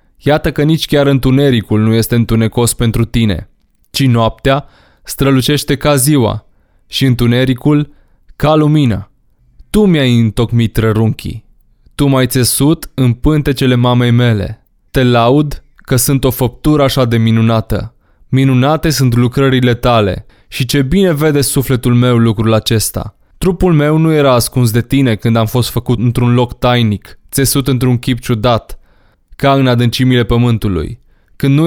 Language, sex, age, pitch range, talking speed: Romanian, male, 20-39, 115-140 Hz, 140 wpm